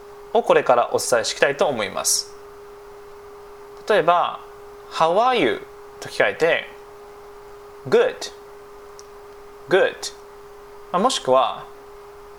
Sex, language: male, Japanese